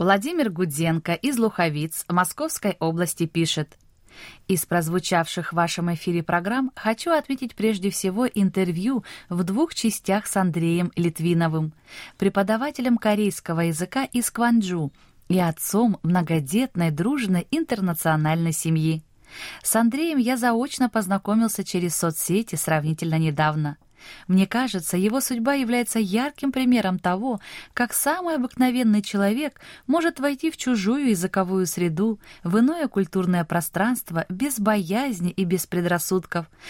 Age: 20-39